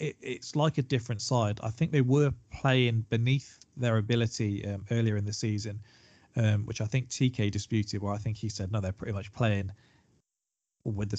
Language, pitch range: English, 110-135 Hz